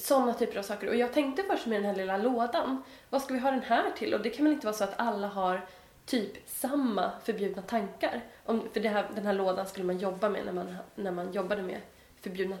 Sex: female